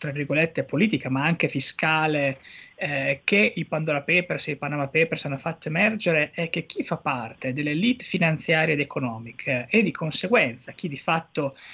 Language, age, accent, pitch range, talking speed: Italian, 20-39, native, 140-180 Hz, 175 wpm